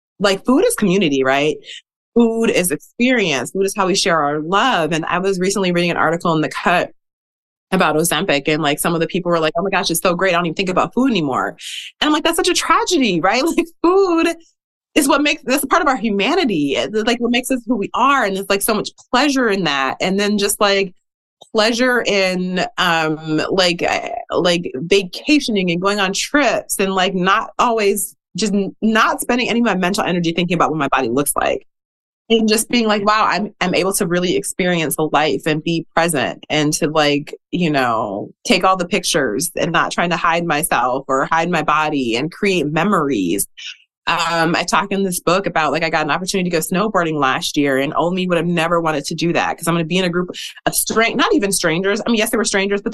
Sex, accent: female, American